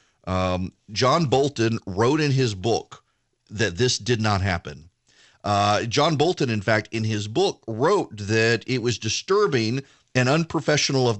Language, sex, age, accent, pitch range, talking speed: English, male, 40-59, American, 115-155 Hz, 150 wpm